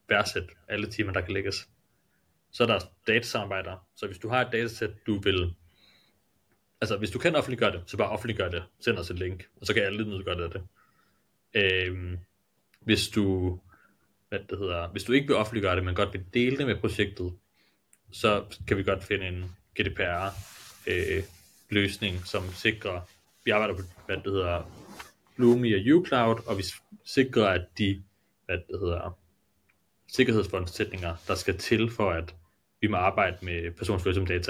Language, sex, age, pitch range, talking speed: Danish, male, 30-49, 90-110 Hz, 170 wpm